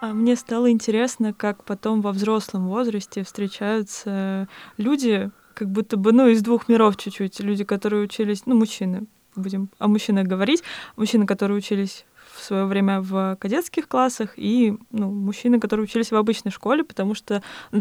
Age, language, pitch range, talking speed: 20-39, Russian, 200-235 Hz, 160 wpm